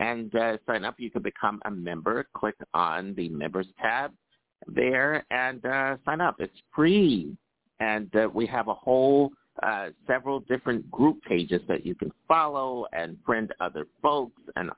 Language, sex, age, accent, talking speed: English, male, 50-69, American, 165 wpm